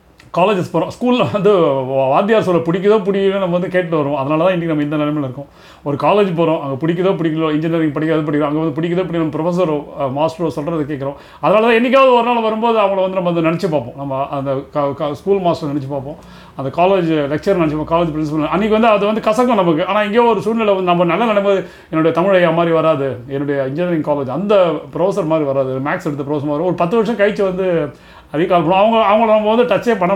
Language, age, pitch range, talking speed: Tamil, 30-49, 150-195 Hz, 200 wpm